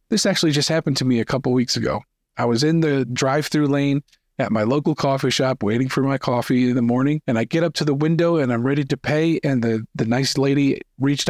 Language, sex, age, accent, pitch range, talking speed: English, male, 40-59, American, 125-160 Hz, 250 wpm